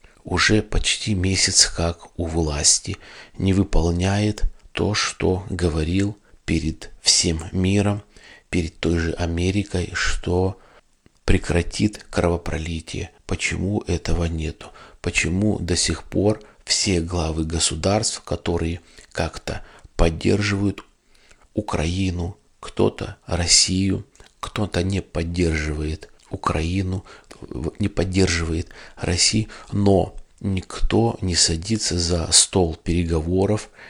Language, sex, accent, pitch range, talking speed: Russian, male, native, 85-100 Hz, 90 wpm